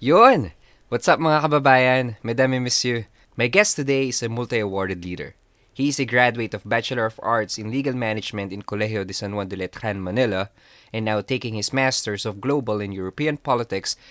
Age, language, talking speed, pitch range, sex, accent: 20-39, Filipino, 185 wpm, 100-130 Hz, male, native